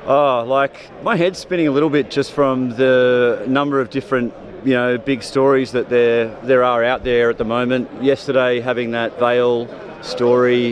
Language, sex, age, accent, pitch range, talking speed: English, male, 30-49, Australian, 120-140 Hz, 185 wpm